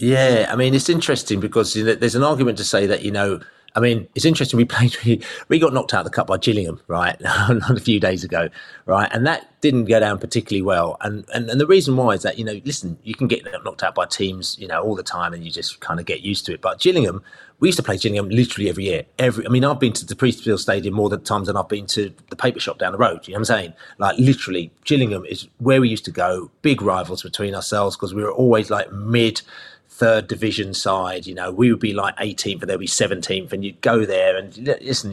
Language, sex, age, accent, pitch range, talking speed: English, male, 30-49, British, 100-125 Hz, 260 wpm